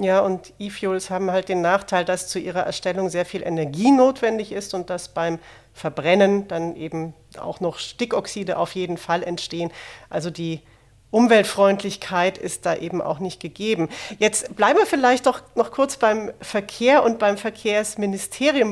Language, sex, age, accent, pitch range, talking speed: German, female, 40-59, German, 185-230 Hz, 160 wpm